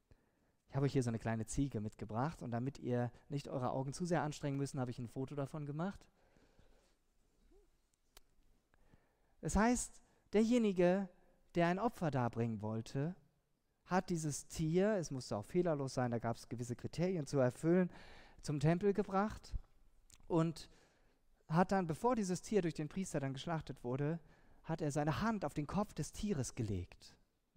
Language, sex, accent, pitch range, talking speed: German, male, German, 120-170 Hz, 160 wpm